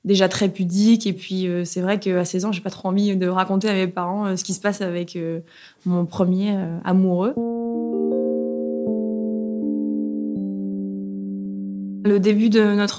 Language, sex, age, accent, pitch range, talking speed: French, female, 20-39, French, 180-205 Hz, 160 wpm